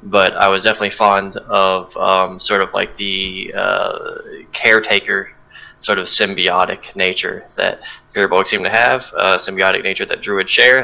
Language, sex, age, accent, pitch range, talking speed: English, male, 20-39, American, 95-105 Hz, 155 wpm